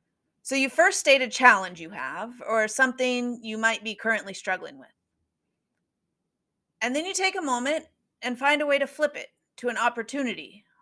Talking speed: 175 wpm